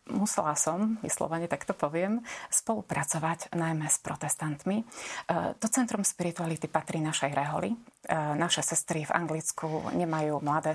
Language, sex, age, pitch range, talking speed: Slovak, female, 30-49, 155-180 Hz, 115 wpm